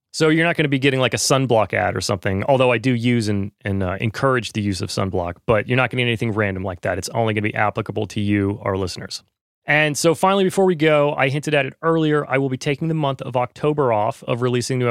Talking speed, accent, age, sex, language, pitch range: 265 wpm, American, 30-49, male, English, 115-150 Hz